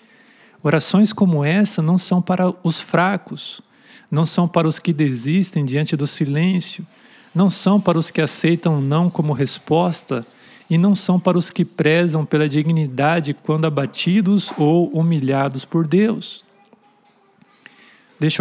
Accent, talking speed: Brazilian, 135 wpm